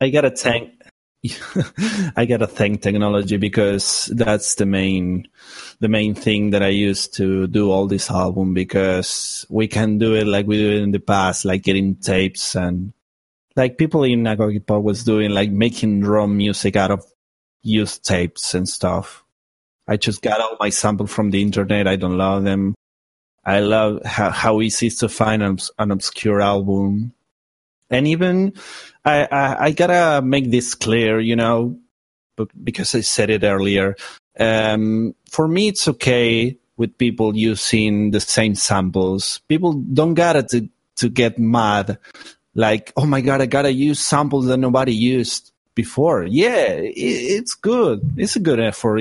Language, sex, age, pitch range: English, male, 30-49, 100-130 Hz